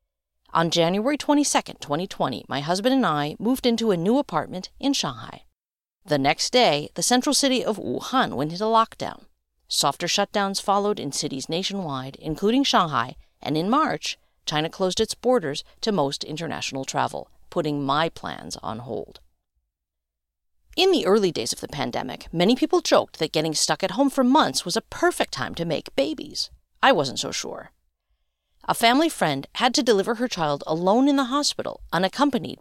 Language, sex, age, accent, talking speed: English, female, 50-69, American, 165 wpm